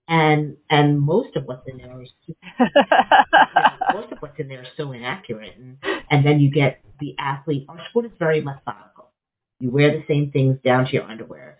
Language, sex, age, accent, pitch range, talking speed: English, female, 40-59, American, 130-155 Hz, 200 wpm